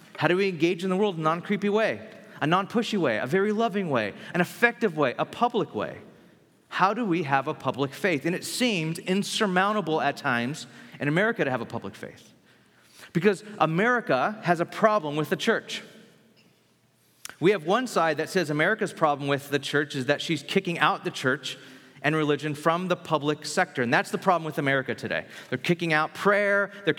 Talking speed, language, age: 195 wpm, English, 30-49